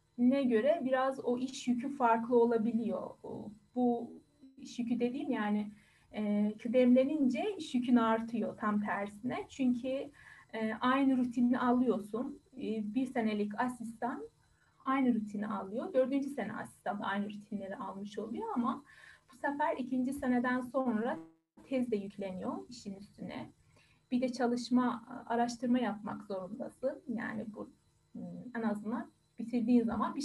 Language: Turkish